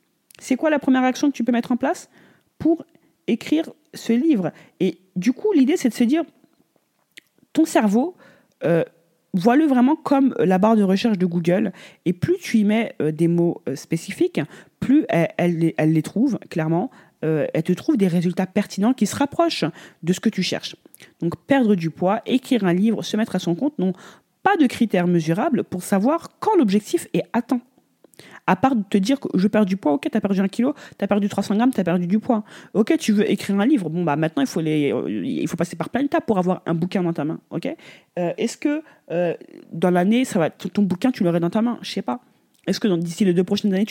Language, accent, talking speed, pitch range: French, French, 225 wpm, 175-250 Hz